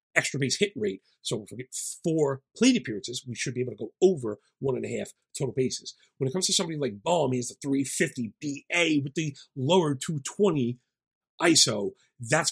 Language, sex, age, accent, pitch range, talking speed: English, male, 40-59, American, 125-155 Hz, 200 wpm